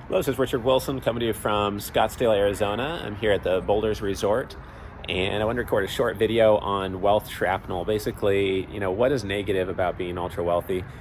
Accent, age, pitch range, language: American, 30-49, 90-105 Hz, English